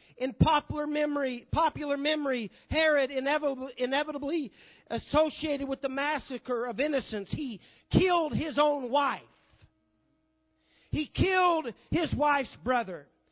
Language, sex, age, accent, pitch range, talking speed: English, male, 40-59, American, 245-305 Hz, 110 wpm